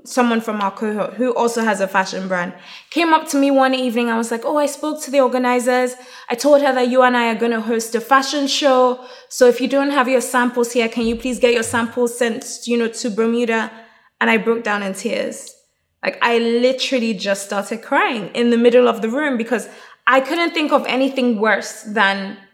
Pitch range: 215-250 Hz